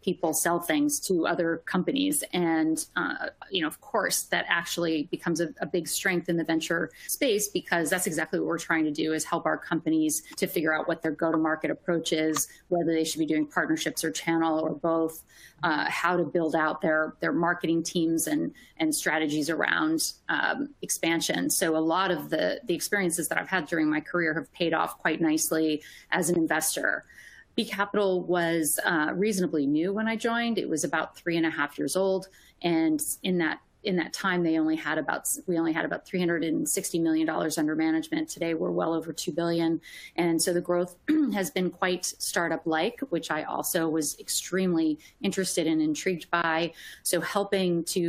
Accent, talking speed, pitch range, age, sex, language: American, 190 wpm, 160-185 Hz, 30-49, female, English